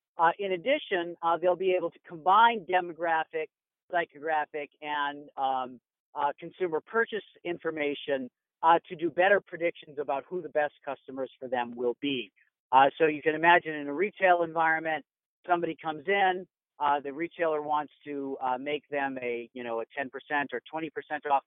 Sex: male